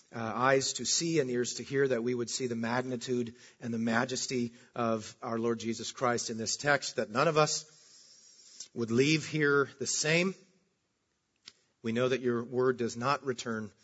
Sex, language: male, English